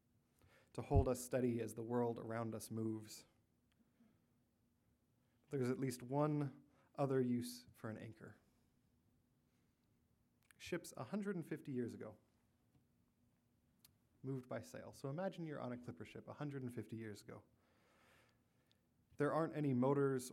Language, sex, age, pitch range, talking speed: English, male, 20-39, 115-135 Hz, 120 wpm